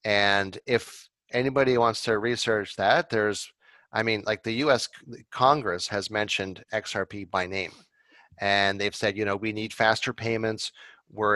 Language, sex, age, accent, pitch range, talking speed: French, male, 30-49, American, 100-120 Hz, 155 wpm